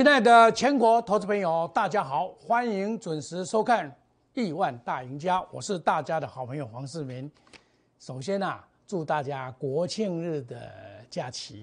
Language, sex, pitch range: Chinese, male, 135-210 Hz